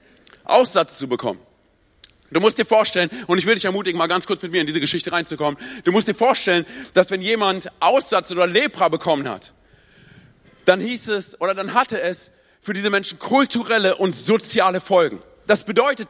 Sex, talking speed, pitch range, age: male, 185 wpm, 180-230 Hz, 40-59